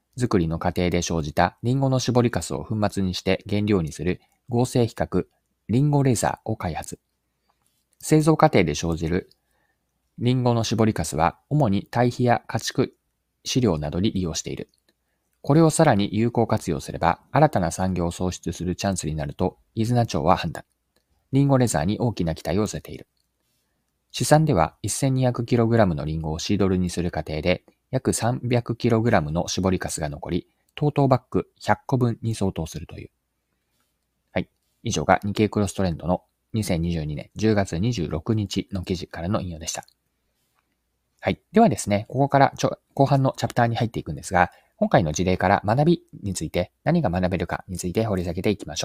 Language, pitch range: Japanese, 85-120 Hz